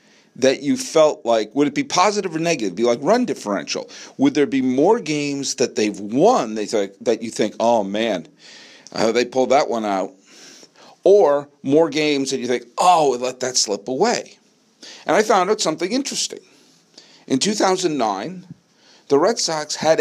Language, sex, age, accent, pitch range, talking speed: English, male, 50-69, American, 120-175 Hz, 175 wpm